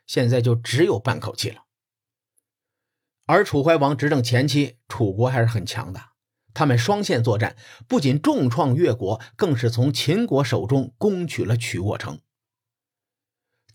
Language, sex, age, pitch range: Chinese, male, 50-69, 115-145 Hz